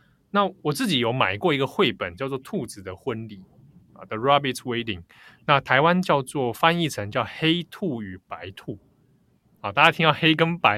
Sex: male